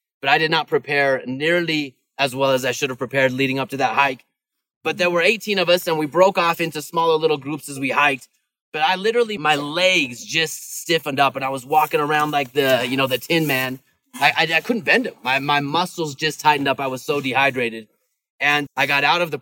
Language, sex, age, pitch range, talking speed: English, male, 30-49, 140-175 Hz, 240 wpm